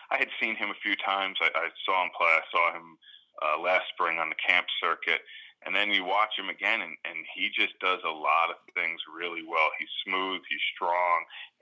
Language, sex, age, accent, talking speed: English, male, 30-49, American, 225 wpm